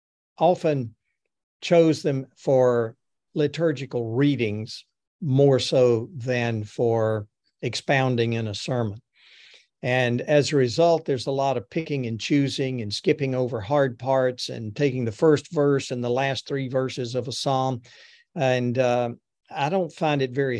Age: 50-69